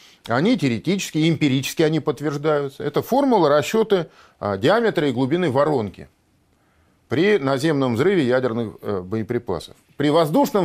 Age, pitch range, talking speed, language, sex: 40-59, 120-170 Hz, 105 wpm, Russian, male